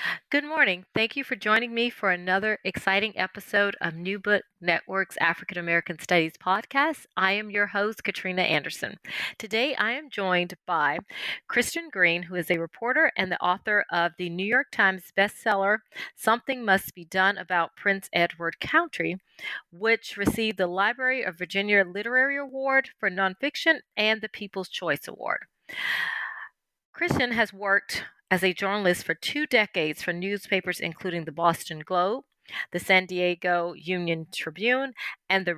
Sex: female